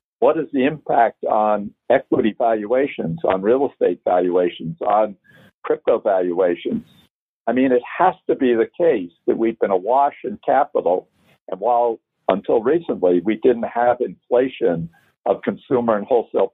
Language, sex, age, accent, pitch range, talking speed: English, male, 60-79, American, 105-145 Hz, 145 wpm